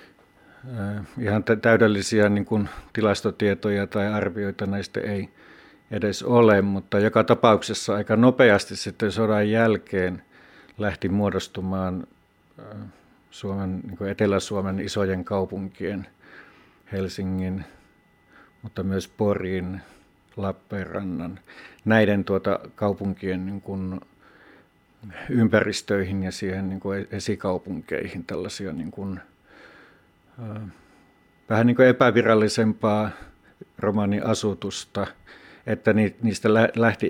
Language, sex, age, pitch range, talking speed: Finnish, male, 50-69, 95-110 Hz, 85 wpm